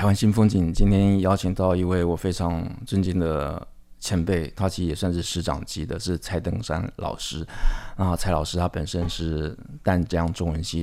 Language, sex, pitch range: Chinese, male, 80-95 Hz